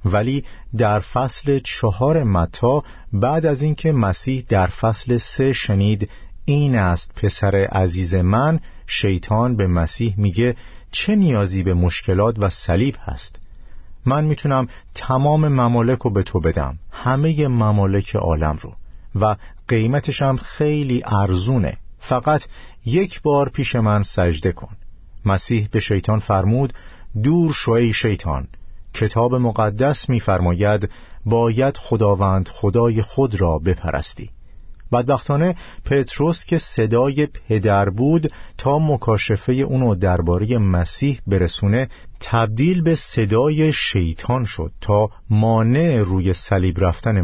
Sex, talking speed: male, 115 wpm